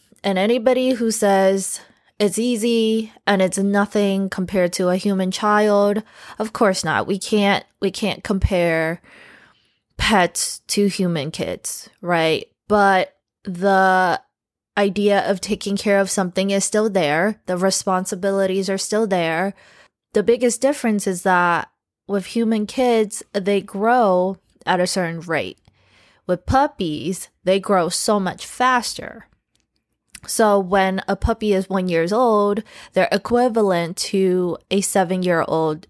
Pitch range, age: 180-215 Hz, 20-39